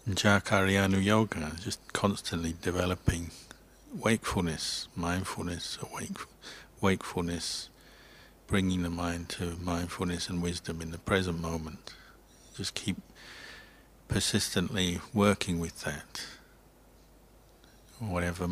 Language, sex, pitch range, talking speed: English, male, 85-95 Hz, 90 wpm